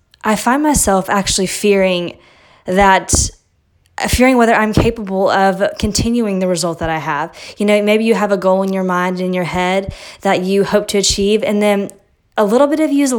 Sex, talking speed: female, 200 wpm